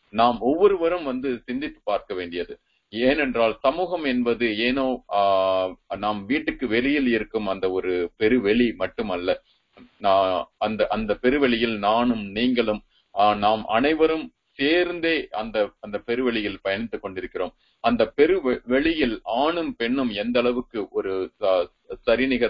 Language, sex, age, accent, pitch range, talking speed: Tamil, male, 30-49, native, 105-160 Hz, 100 wpm